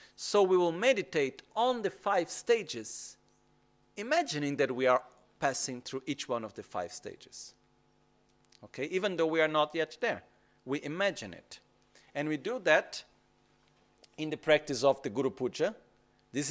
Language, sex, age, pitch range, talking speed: Italian, male, 40-59, 125-155 Hz, 155 wpm